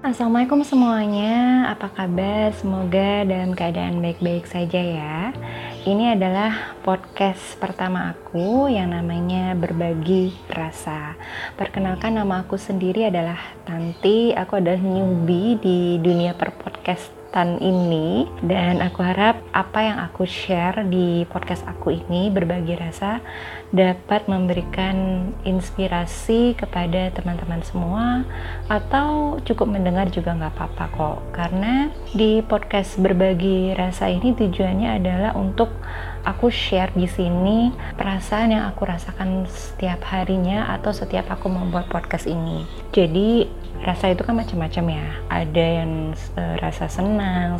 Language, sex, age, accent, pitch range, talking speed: Indonesian, female, 20-39, native, 170-200 Hz, 120 wpm